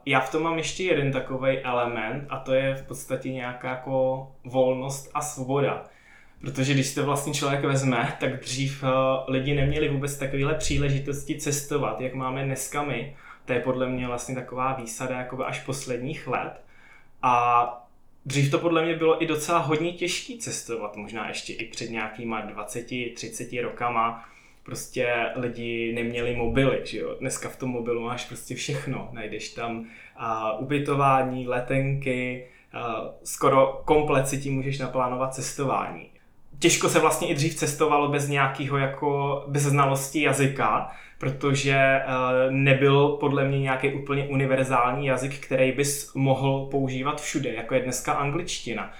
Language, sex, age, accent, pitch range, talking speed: Czech, male, 20-39, native, 125-140 Hz, 150 wpm